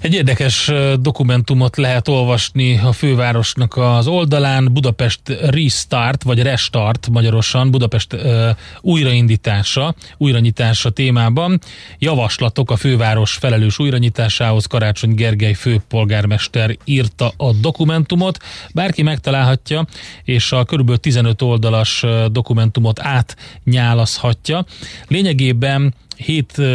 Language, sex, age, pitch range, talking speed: Hungarian, male, 30-49, 110-130 Hz, 90 wpm